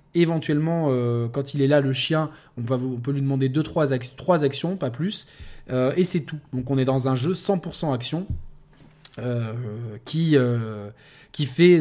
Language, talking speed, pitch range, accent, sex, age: French, 195 wpm, 135-165 Hz, French, male, 20-39